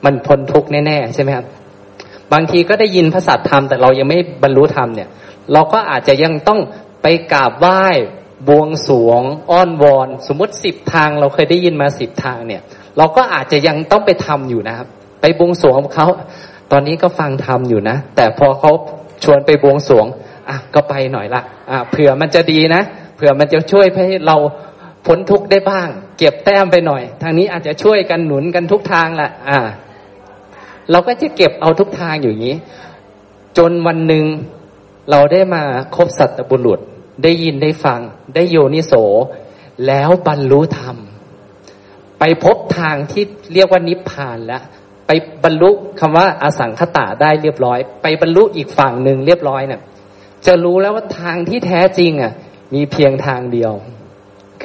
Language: Thai